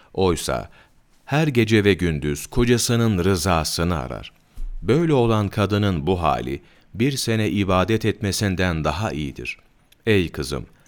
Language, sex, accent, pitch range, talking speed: Turkish, male, native, 90-115 Hz, 115 wpm